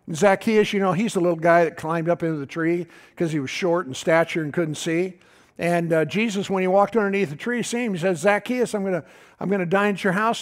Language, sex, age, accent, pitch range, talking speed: English, male, 60-79, American, 155-195 Hz, 260 wpm